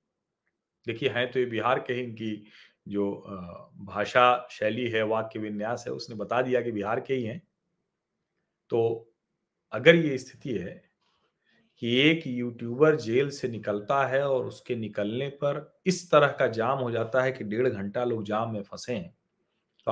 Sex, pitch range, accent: male, 125-175 Hz, native